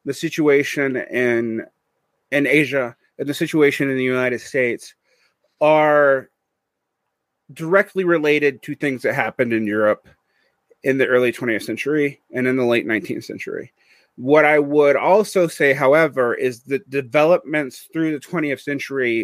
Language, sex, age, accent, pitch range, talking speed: German, male, 30-49, American, 125-165 Hz, 140 wpm